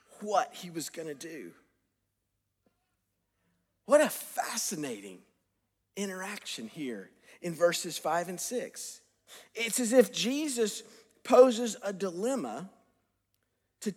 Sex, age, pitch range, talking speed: male, 50-69, 180-235 Hz, 105 wpm